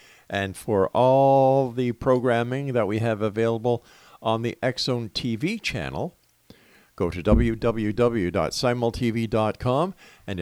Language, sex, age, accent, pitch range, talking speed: English, male, 50-69, American, 105-130 Hz, 105 wpm